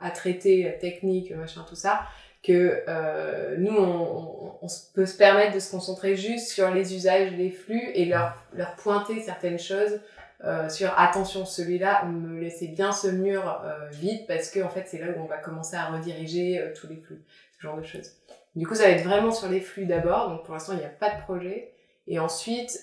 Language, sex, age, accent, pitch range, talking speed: French, female, 20-39, French, 165-195 Hz, 220 wpm